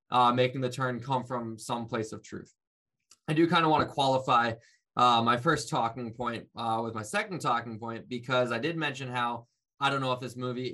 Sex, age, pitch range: male, 20-39, 115-135 Hz